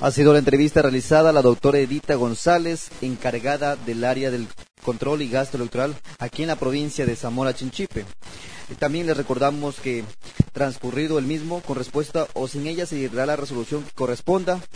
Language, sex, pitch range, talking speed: Spanish, male, 125-150 Hz, 170 wpm